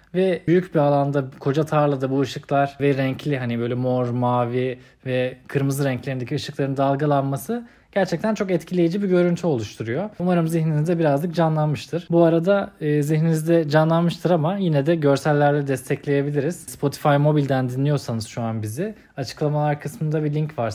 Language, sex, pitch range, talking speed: Turkish, male, 140-180 Hz, 145 wpm